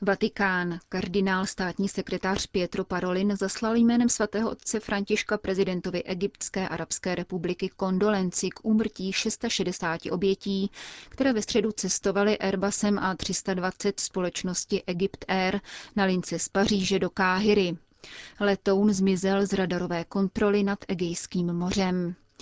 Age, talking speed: 30-49, 120 wpm